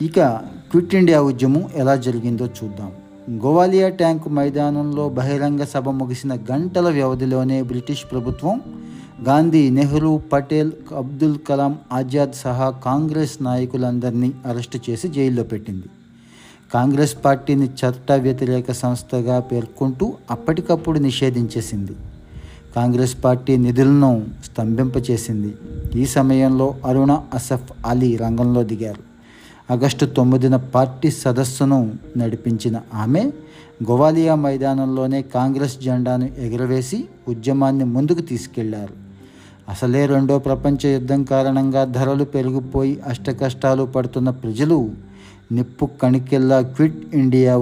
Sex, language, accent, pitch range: male, Telugu, native, 120-140 Hz